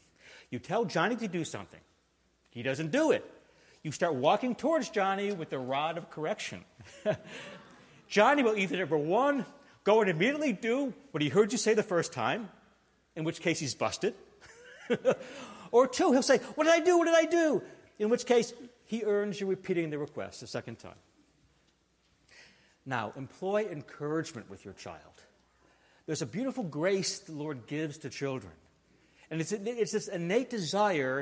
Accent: American